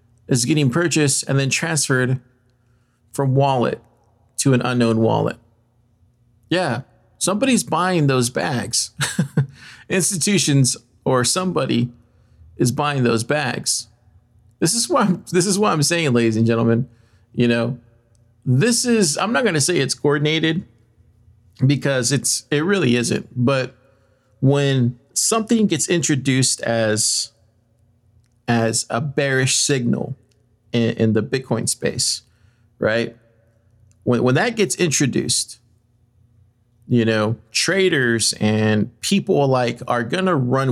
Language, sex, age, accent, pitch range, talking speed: English, male, 40-59, American, 115-145 Hz, 120 wpm